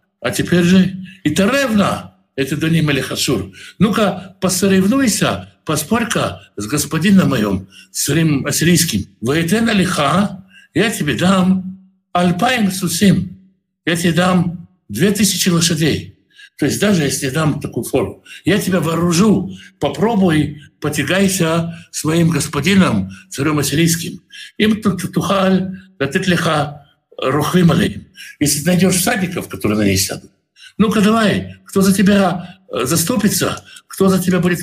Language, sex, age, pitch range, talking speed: Russian, male, 60-79, 150-190 Hz, 115 wpm